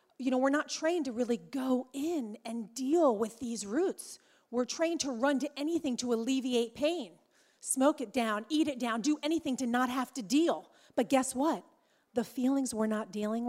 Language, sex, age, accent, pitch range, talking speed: English, female, 40-59, American, 215-265 Hz, 195 wpm